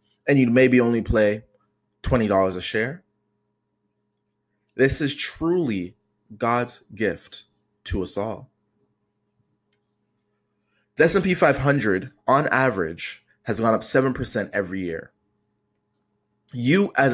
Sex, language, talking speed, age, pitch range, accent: male, English, 100 wpm, 20-39, 105-130 Hz, American